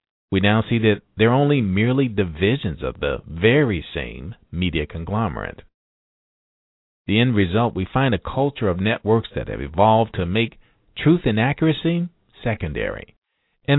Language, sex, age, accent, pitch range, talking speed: English, male, 50-69, American, 95-130 Hz, 145 wpm